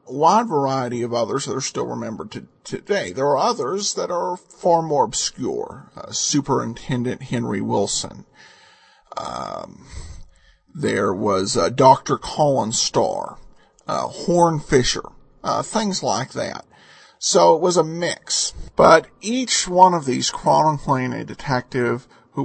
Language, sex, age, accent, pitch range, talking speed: English, male, 50-69, American, 140-220 Hz, 135 wpm